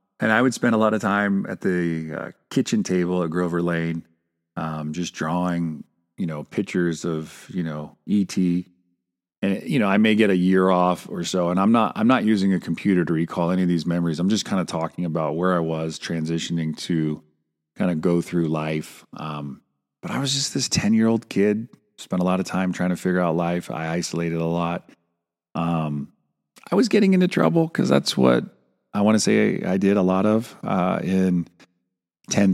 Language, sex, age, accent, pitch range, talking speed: English, male, 40-59, American, 85-100 Hz, 205 wpm